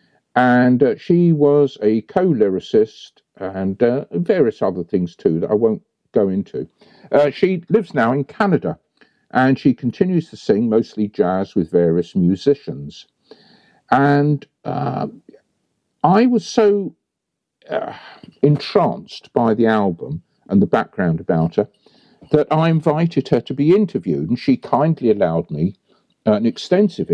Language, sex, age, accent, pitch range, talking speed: English, male, 50-69, British, 100-150 Hz, 135 wpm